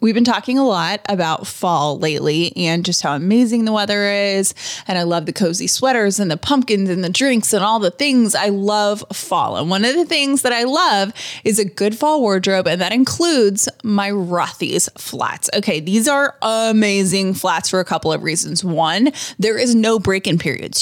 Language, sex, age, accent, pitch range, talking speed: English, female, 20-39, American, 190-255 Hz, 200 wpm